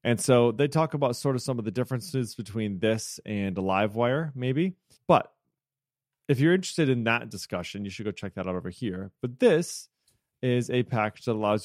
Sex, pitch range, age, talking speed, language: male, 105-130 Hz, 30-49, 195 wpm, English